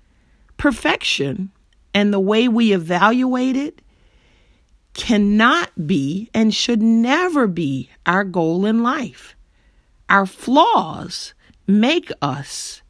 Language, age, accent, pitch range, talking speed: English, 40-59, American, 165-220 Hz, 100 wpm